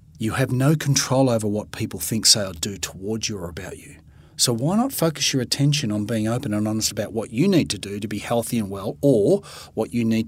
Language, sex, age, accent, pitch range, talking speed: English, male, 40-59, Australian, 105-130 Hz, 245 wpm